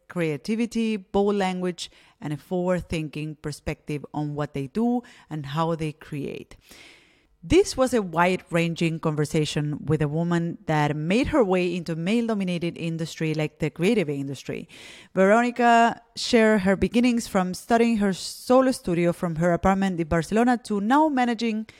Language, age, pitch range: English, 30-49, 165-215 Hz